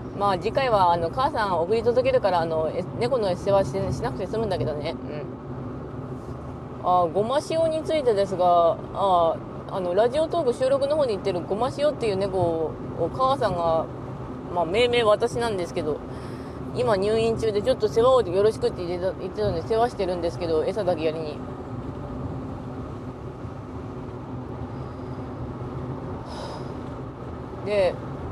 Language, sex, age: Japanese, female, 20-39